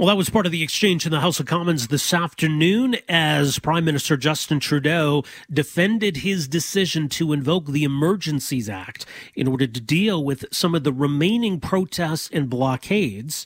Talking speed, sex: 175 wpm, male